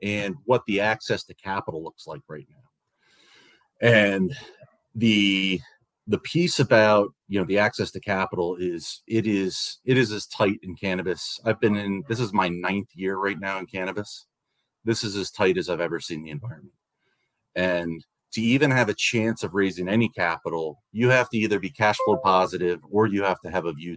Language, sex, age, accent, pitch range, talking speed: English, male, 30-49, American, 95-125 Hz, 195 wpm